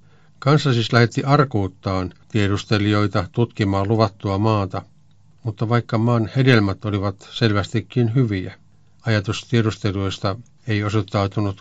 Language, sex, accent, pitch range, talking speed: Finnish, male, native, 100-115 Hz, 100 wpm